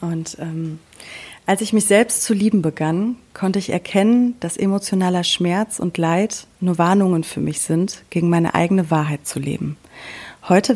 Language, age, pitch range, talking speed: German, 30-49, 165-200 Hz, 160 wpm